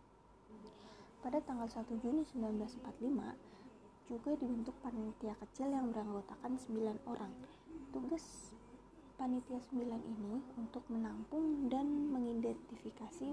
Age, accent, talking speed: 20-39, native, 95 wpm